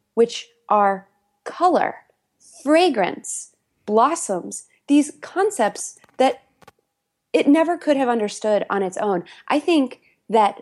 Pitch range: 200-265 Hz